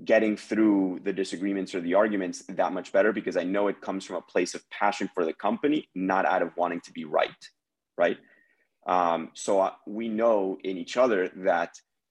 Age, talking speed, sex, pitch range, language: 30-49, 195 wpm, male, 90-100 Hz, English